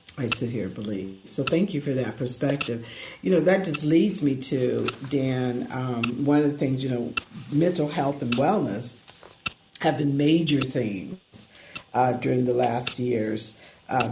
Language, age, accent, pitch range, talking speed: English, 50-69, American, 125-155 Hz, 170 wpm